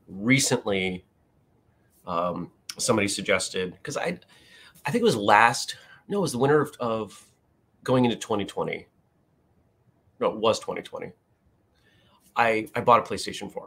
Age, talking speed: 30-49, 135 wpm